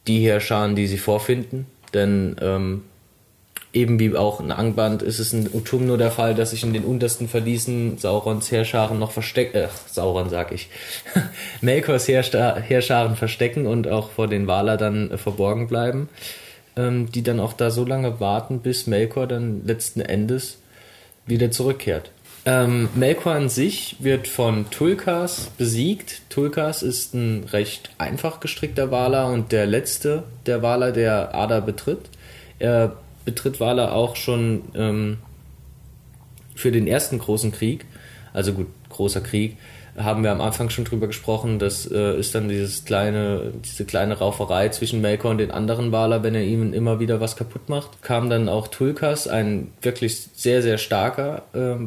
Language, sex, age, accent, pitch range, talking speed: German, male, 20-39, German, 105-125 Hz, 160 wpm